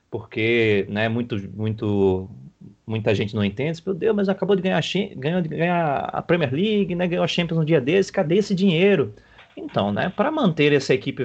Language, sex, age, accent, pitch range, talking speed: Portuguese, male, 30-49, Brazilian, 115-170 Hz, 190 wpm